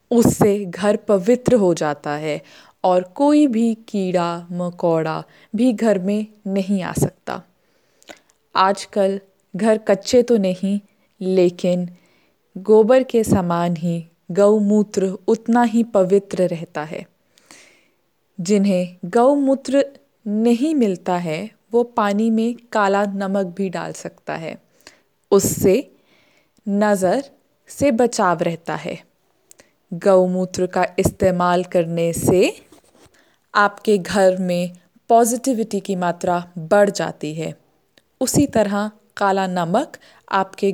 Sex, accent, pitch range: female, native, 180-225 Hz